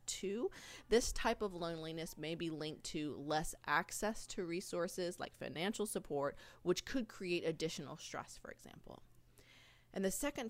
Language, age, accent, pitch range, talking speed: English, 30-49, American, 160-205 Hz, 150 wpm